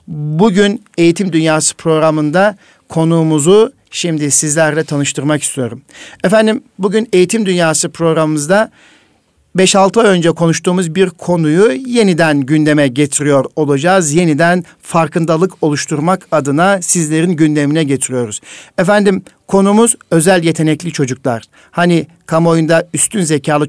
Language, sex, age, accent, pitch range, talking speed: Turkish, male, 60-79, native, 150-185 Hz, 105 wpm